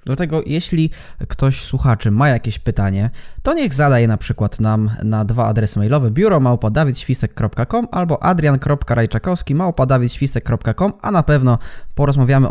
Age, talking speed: 20-39, 115 wpm